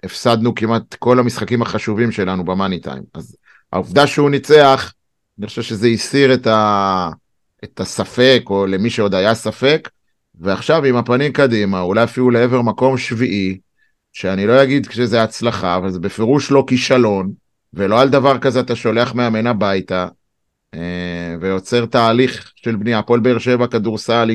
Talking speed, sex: 145 wpm, male